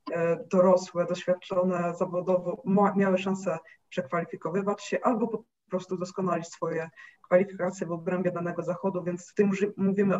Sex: female